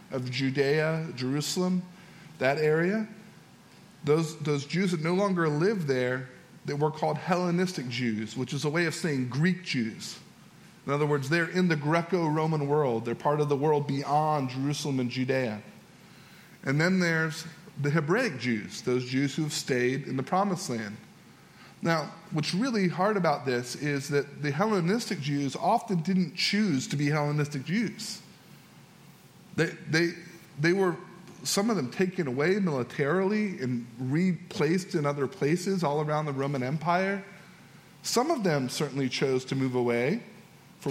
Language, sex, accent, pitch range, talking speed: English, male, American, 140-180 Hz, 155 wpm